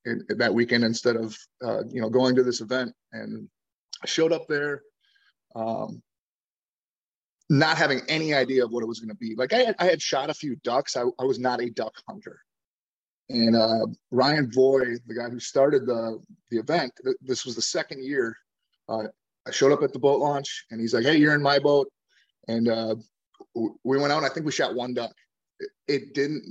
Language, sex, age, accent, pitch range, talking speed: English, male, 30-49, American, 120-150 Hz, 215 wpm